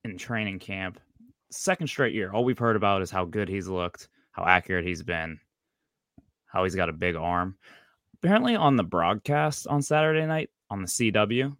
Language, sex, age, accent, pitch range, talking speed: English, male, 20-39, American, 90-110 Hz, 180 wpm